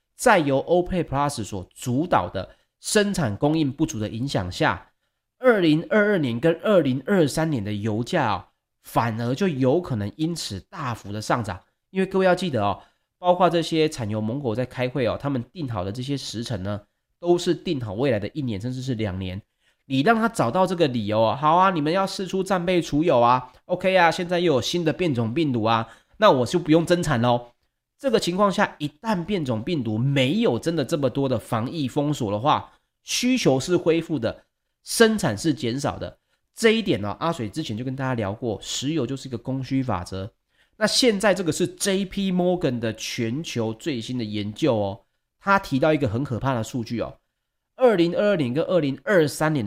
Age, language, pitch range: 30-49, Chinese, 115-175 Hz